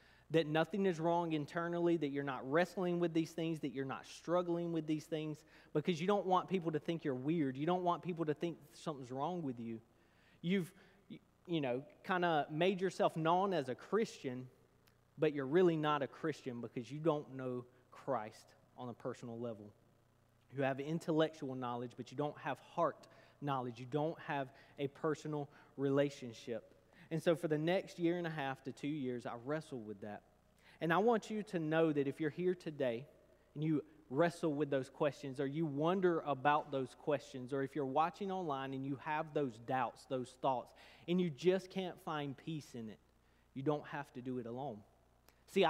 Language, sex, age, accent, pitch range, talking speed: English, male, 30-49, American, 130-170 Hz, 195 wpm